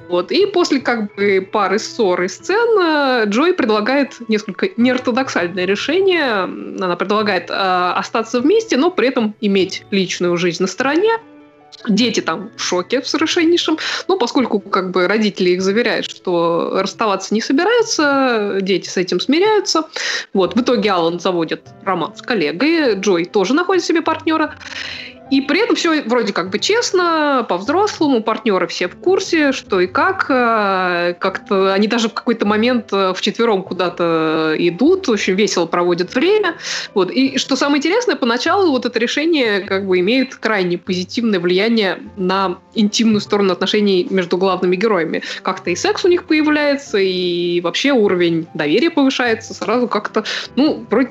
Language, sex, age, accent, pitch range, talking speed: Russian, female, 20-39, native, 185-285 Hz, 150 wpm